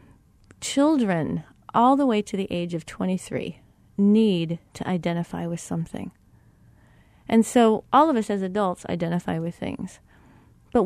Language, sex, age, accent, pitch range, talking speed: English, female, 40-59, American, 175-225 Hz, 140 wpm